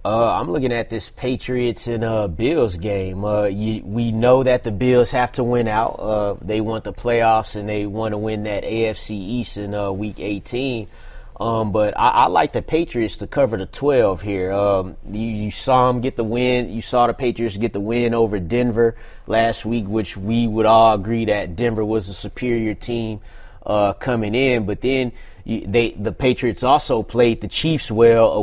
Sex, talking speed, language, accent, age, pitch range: male, 195 wpm, English, American, 30-49, 105-125 Hz